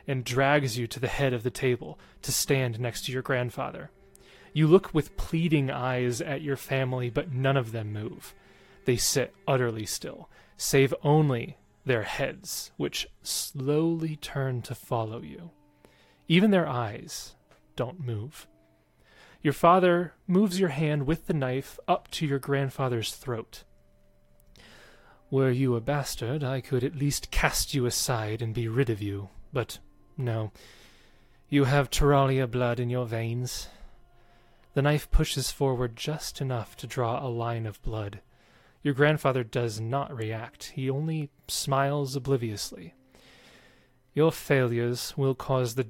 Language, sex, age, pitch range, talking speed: English, male, 30-49, 115-145 Hz, 145 wpm